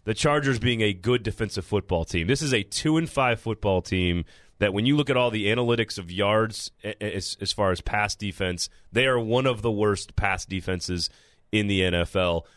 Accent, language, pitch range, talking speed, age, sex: American, English, 100-130 Hz, 200 wpm, 30-49, male